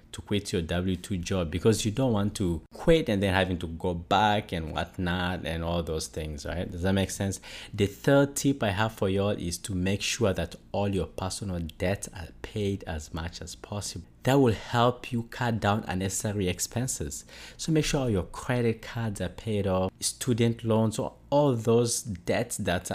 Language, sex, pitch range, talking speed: English, male, 90-110 Hz, 200 wpm